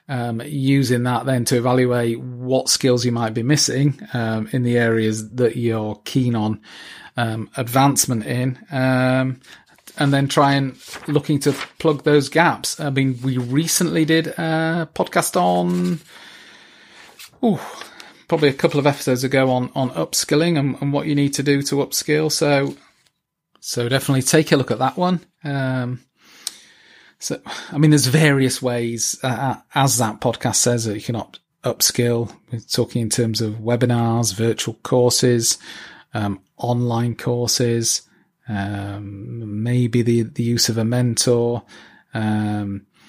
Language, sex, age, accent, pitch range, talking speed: English, male, 30-49, British, 115-140 Hz, 150 wpm